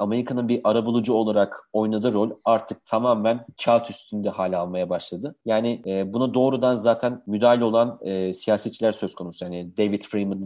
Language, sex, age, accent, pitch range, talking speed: Turkish, male, 40-59, native, 105-130 Hz, 145 wpm